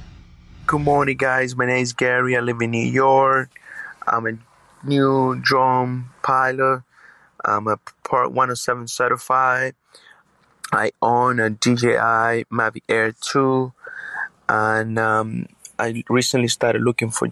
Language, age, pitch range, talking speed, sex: English, 20-39, 110-125 Hz, 125 wpm, male